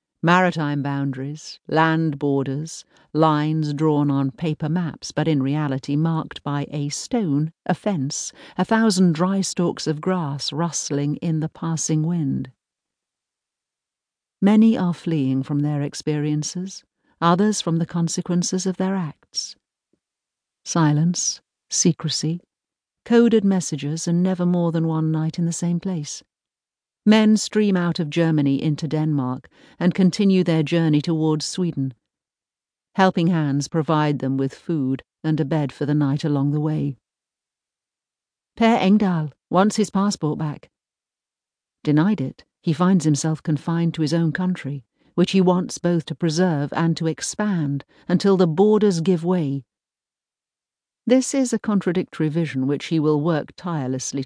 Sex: female